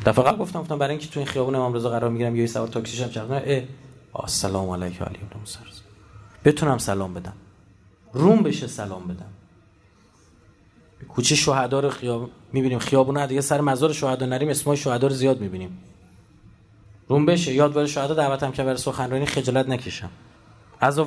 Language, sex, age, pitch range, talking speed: Persian, male, 30-49, 105-160 Hz, 165 wpm